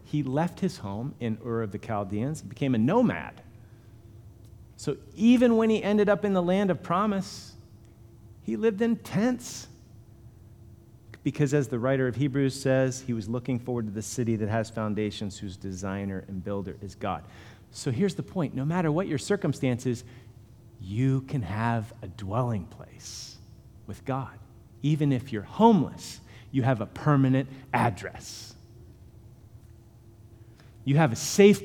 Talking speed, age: 150 wpm, 40-59